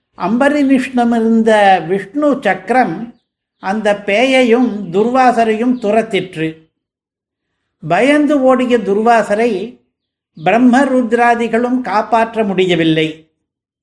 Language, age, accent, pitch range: Tamil, 50-69, native, 195-245 Hz